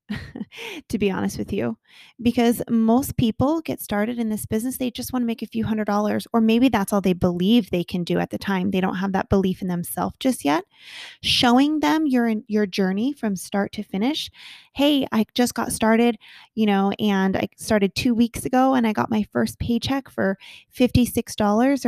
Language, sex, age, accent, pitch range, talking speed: English, female, 20-39, American, 195-230 Hz, 200 wpm